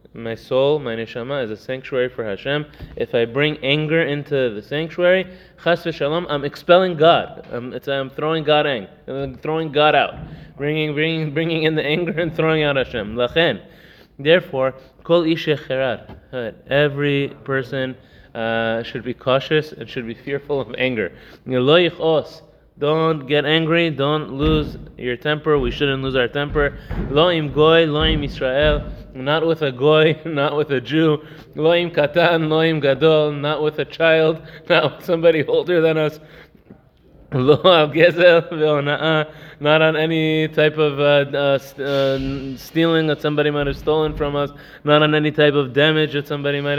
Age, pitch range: 20-39, 140-160 Hz